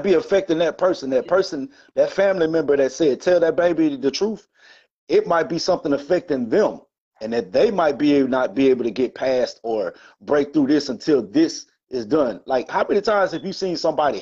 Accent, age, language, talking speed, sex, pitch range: American, 30-49, English, 205 wpm, male, 130-195 Hz